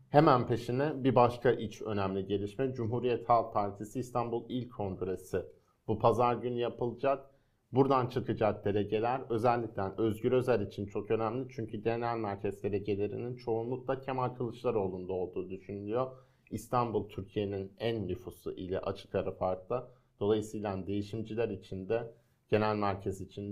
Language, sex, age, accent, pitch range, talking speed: Turkish, male, 50-69, native, 100-125 Hz, 125 wpm